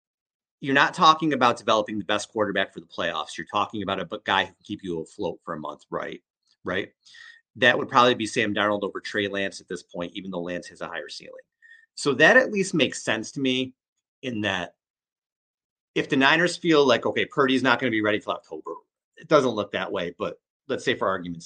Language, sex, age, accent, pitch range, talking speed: English, male, 30-49, American, 100-160 Hz, 220 wpm